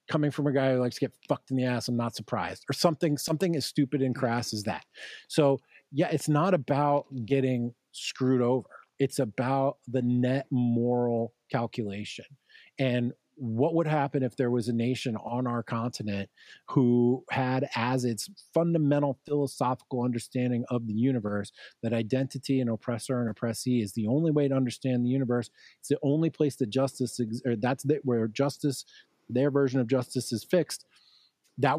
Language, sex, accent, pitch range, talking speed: English, male, American, 120-140 Hz, 175 wpm